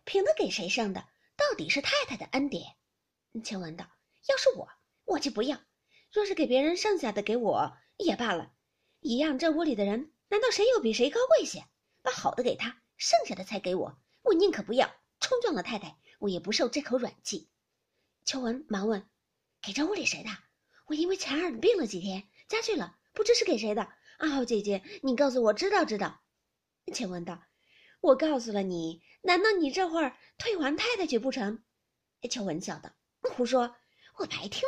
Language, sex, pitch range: Chinese, female, 220-360 Hz